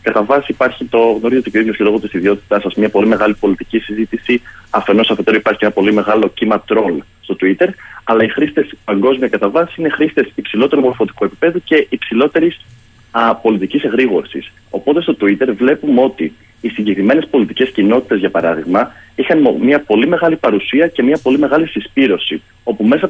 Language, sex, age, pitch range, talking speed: Greek, male, 30-49, 105-140 Hz, 170 wpm